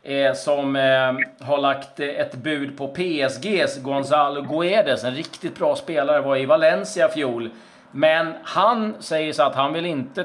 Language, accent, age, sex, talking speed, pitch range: Swedish, native, 40-59, male, 145 wpm, 130-160 Hz